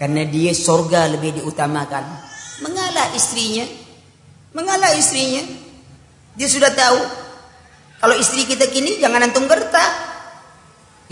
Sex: female